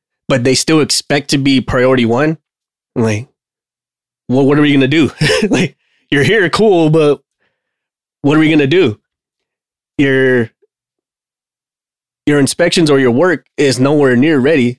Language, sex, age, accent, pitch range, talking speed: English, male, 20-39, American, 120-145 Hz, 150 wpm